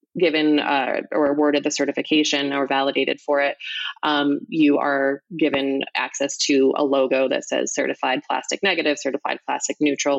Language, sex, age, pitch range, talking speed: English, female, 20-39, 135-155 Hz, 155 wpm